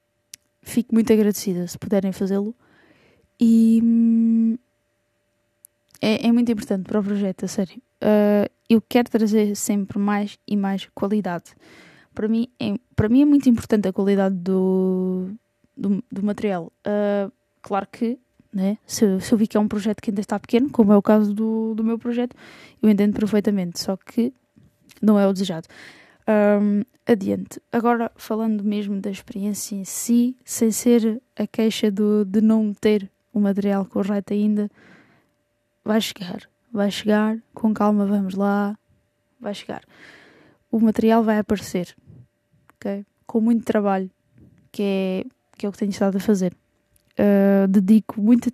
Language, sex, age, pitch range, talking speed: Portuguese, female, 10-29, 195-225 Hz, 150 wpm